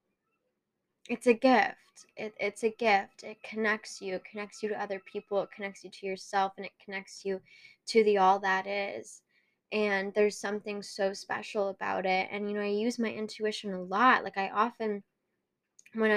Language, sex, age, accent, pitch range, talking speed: English, female, 10-29, American, 200-225 Hz, 185 wpm